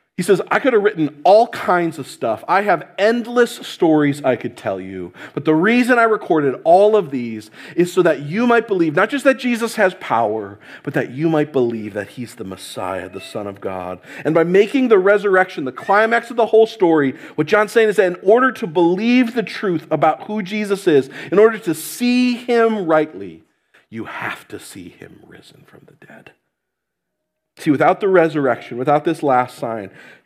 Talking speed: 200 wpm